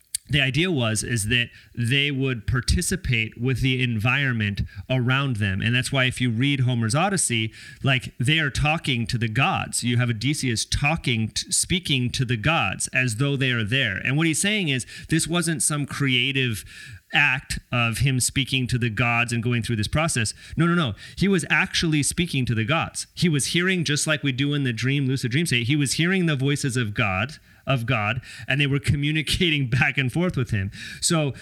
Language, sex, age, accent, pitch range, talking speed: English, male, 30-49, American, 115-145 Hz, 200 wpm